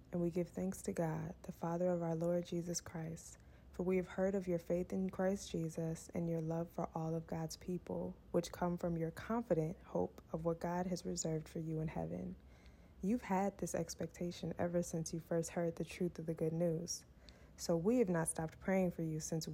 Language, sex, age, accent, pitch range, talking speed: English, female, 20-39, American, 165-185 Hz, 215 wpm